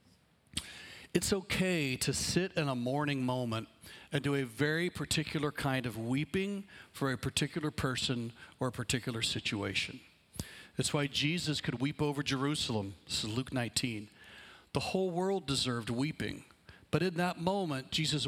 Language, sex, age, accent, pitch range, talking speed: English, male, 60-79, American, 125-165 Hz, 150 wpm